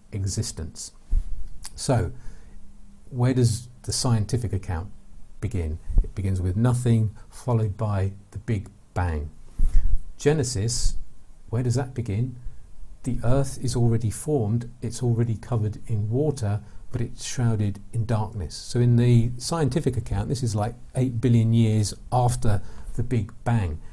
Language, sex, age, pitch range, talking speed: English, male, 50-69, 100-125 Hz, 130 wpm